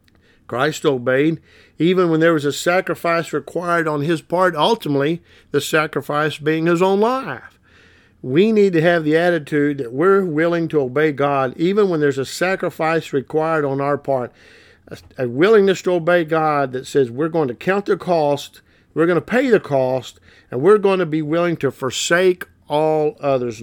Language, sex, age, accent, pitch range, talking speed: English, male, 50-69, American, 135-180 Hz, 180 wpm